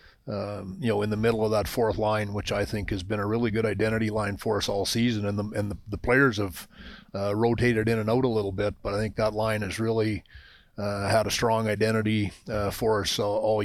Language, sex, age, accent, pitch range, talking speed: English, male, 40-59, American, 100-110 Hz, 245 wpm